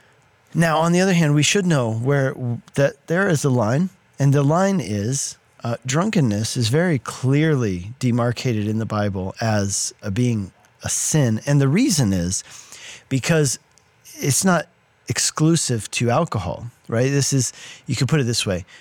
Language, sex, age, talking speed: English, male, 40-59, 165 wpm